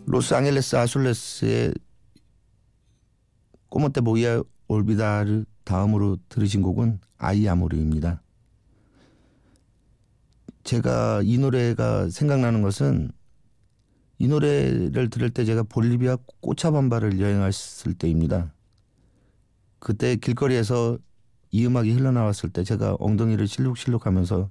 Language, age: Korean, 50-69